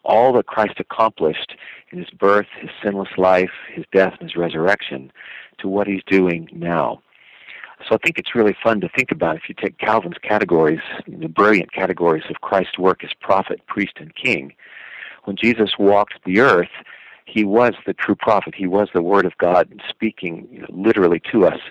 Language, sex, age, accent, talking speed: English, male, 50-69, American, 190 wpm